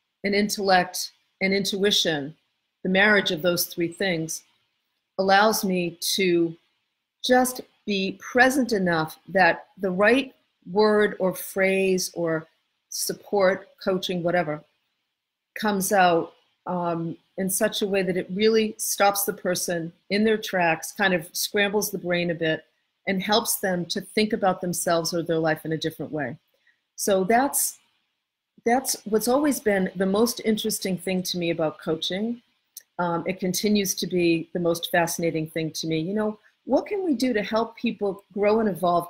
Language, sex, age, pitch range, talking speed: English, female, 50-69, 170-210 Hz, 155 wpm